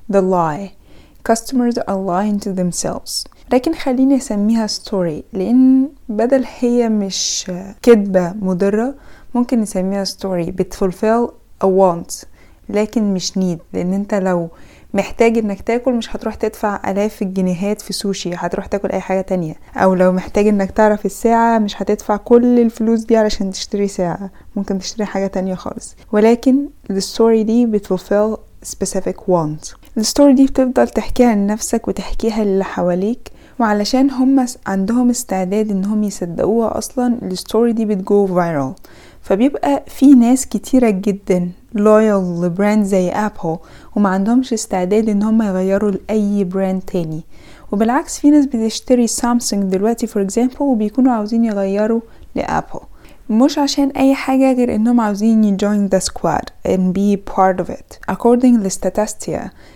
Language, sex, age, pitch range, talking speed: Arabic, female, 20-39, 190-235 Hz, 135 wpm